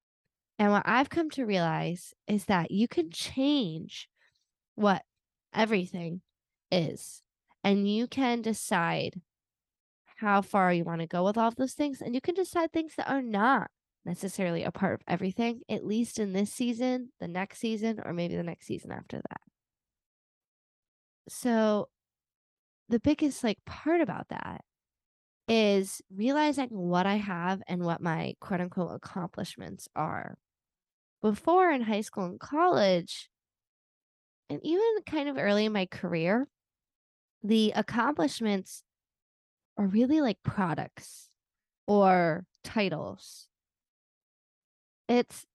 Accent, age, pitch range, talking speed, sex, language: American, 10-29, 185-240 Hz, 130 wpm, female, English